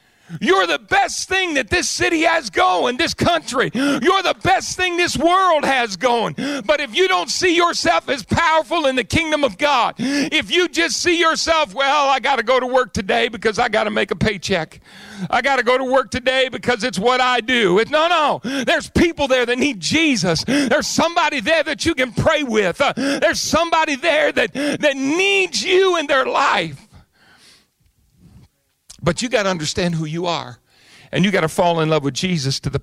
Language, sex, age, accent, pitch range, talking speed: English, male, 50-69, American, 175-290 Hz, 200 wpm